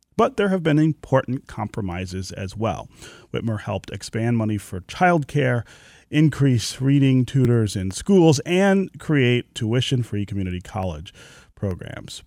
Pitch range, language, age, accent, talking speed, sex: 100-135 Hz, English, 30-49, American, 125 wpm, male